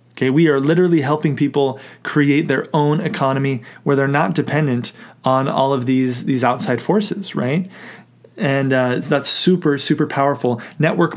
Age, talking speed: 30-49, 155 wpm